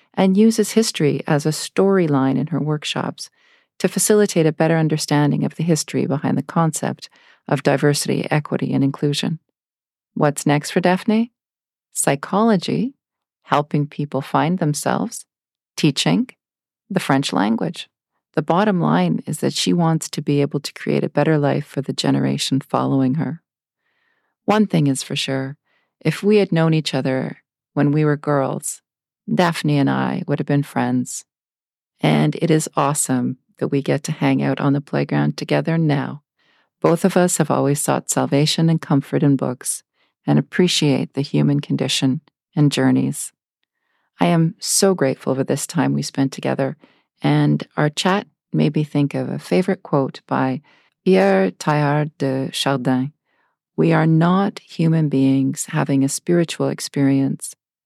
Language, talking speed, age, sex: English, 150 wpm, 40-59, female